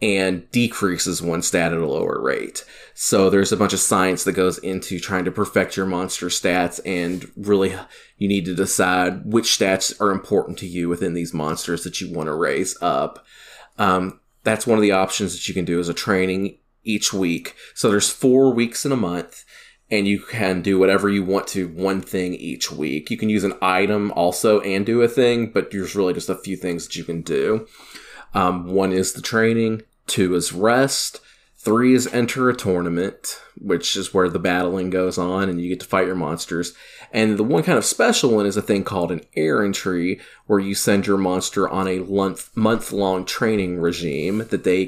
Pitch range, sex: 90-105 Hz, male